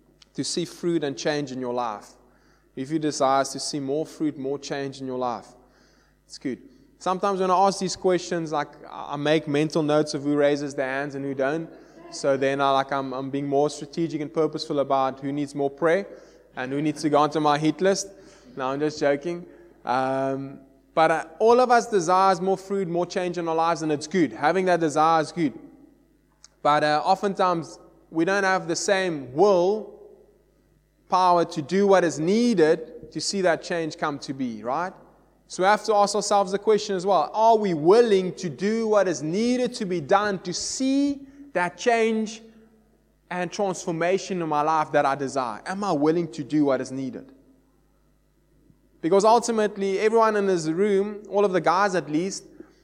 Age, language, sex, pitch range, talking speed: 20-39, English, male, 150-195 Hz, 190 wpm